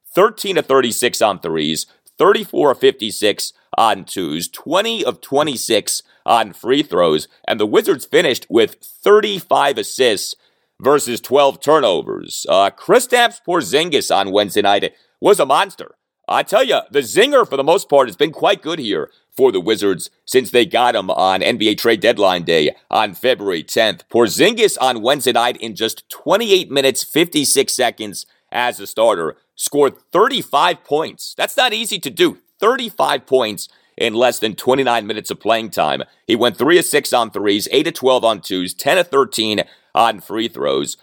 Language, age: English, 40-59